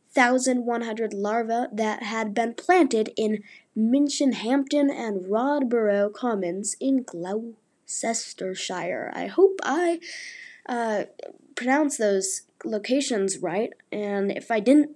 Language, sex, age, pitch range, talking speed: English, female, 20-39, 215-280 Hz, 100 wpm